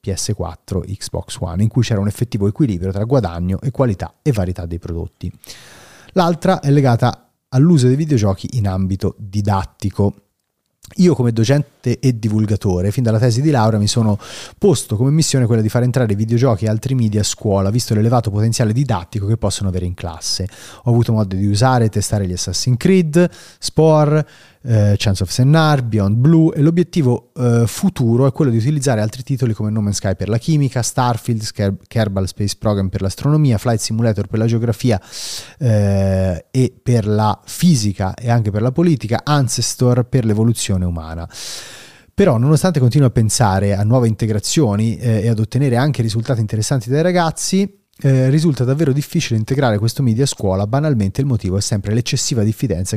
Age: 30-49